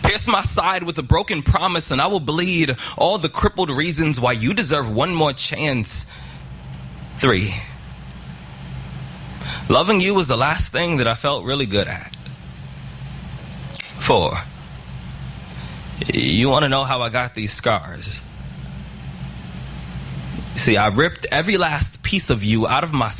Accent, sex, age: American, male, 20-39